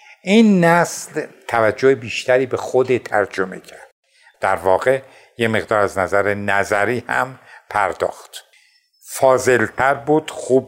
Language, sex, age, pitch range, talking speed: Persian, male, 60-79, 115-160 Hz, 110 wpm